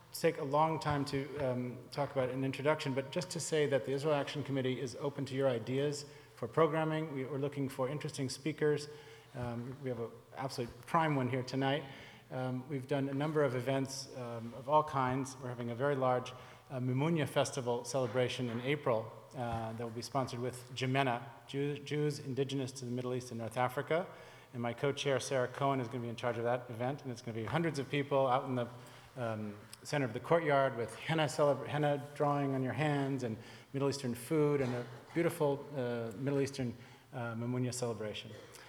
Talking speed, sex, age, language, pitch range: 200 wpm, male, 40-59, English, 125-145 Hz